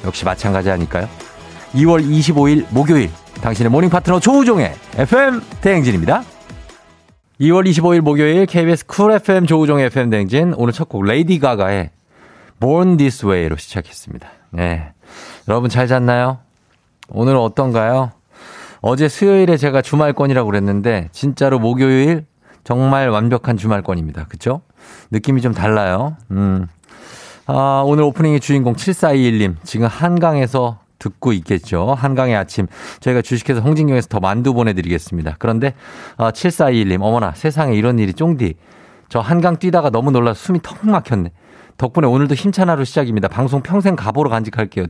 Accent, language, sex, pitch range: native, Korean, male, 100-155 Hz